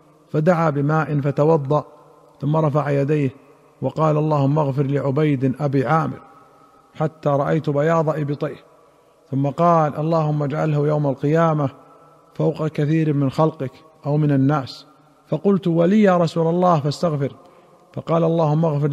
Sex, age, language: male, 50-69, Arabic